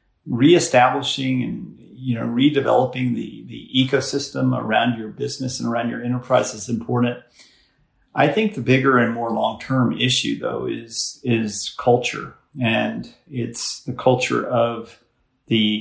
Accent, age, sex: American, 40-59, male